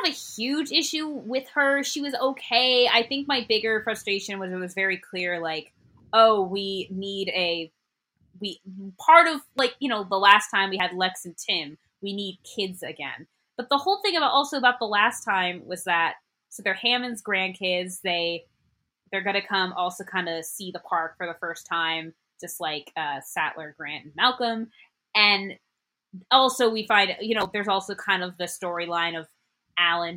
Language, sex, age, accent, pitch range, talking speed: English, female, 20-39, American, 170-225 Hz, 185 wpm